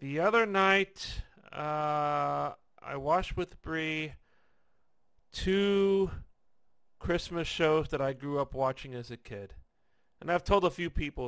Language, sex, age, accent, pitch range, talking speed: English, male, 40-59, American, 130-165 Hz, 135 wpm